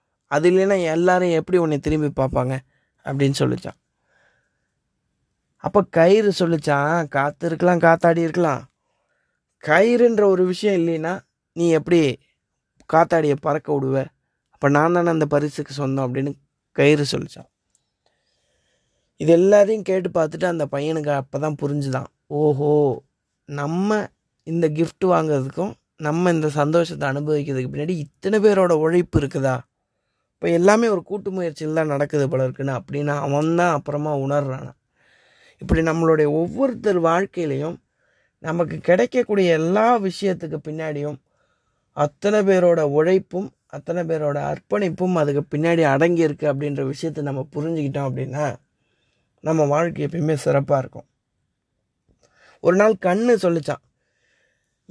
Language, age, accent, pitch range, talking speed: Tamil, 20-39, native, 145-175 Hz, 110 wpm